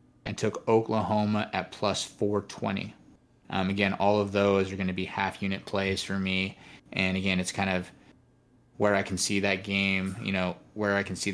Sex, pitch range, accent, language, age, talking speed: male, 95-110 Hz, American, English, 20-39, 190 wpm